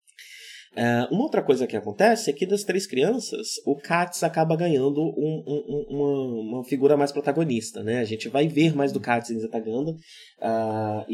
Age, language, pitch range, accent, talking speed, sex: 20-39, Portuguese, 115-160 Hz, Brazilian, 190 wpm, male